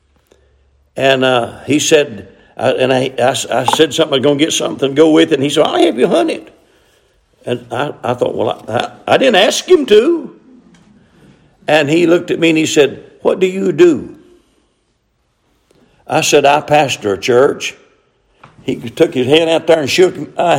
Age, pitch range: 60-79, 150-215 Hz